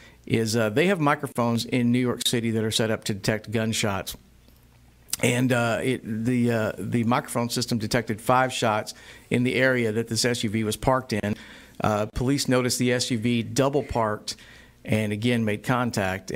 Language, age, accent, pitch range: English, 50-69, American, 110-135 Hz